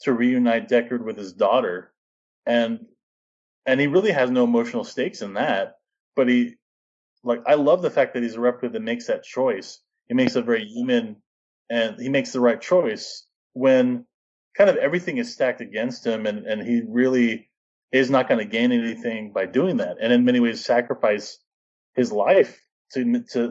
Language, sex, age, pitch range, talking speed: English, male, 30-49, 115-185 Hz, 185 wpm